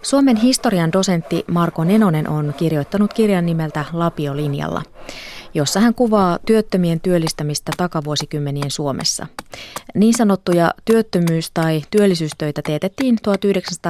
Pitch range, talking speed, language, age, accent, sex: 150-200 Hz, 100 wpm, Finnish, 30-49, native, female